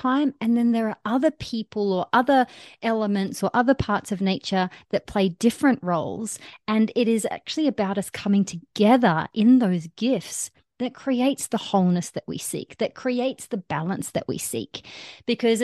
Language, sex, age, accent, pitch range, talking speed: English, female, 30-49, Australian, 180-245 Hz, 175 wpm